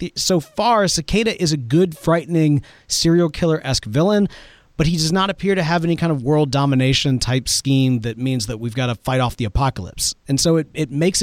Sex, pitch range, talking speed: male, 120-170 Hz, 205 wpm